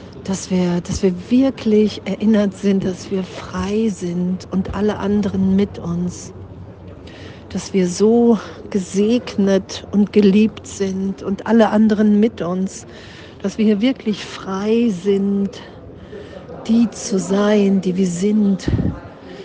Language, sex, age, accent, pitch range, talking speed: German, female, 50-69, German, 185-215 Hz, 120 wpm